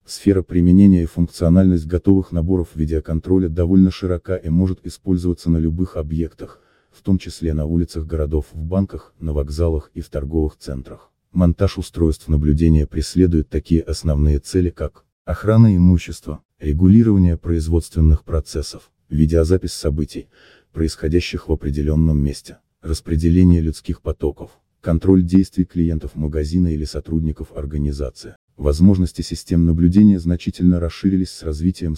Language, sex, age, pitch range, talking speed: Russian, male, 30-49, 80-90 Hz, 120 wpm